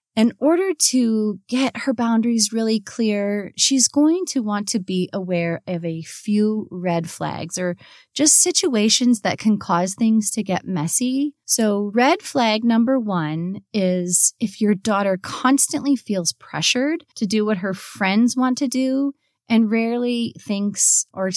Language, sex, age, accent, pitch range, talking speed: English, female, 30-49, American, 190-255 Hz, 150 wpm